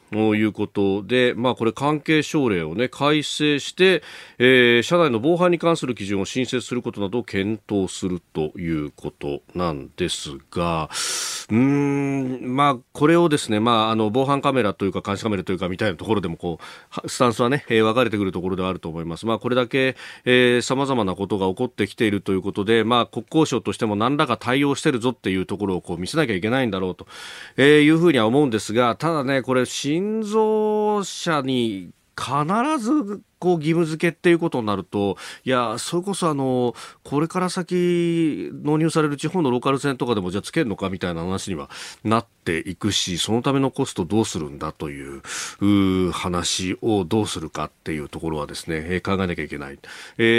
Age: 40-59